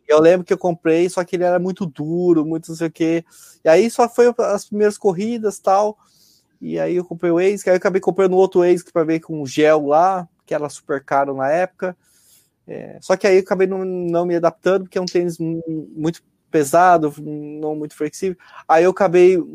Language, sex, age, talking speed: Portuguese, male, 20-39, 220 wpm